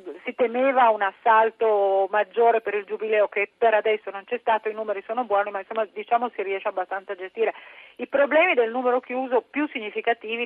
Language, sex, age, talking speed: Italian, female, 40-59, 190 wpm